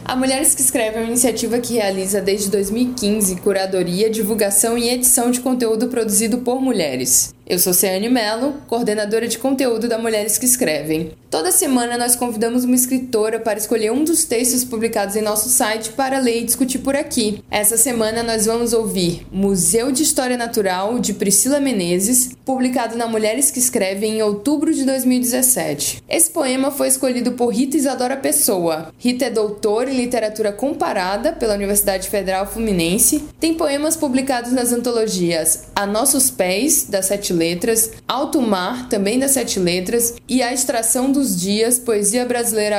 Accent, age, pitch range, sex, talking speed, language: Brazilian, 20-39, 205-255 Hz, female, 160 wpm, Portuguese